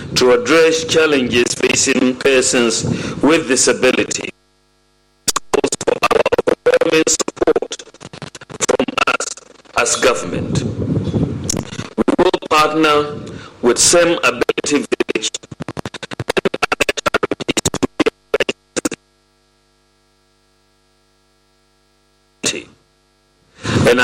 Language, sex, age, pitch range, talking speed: English, male, 50-69, 120-170 Hz, 50 wpm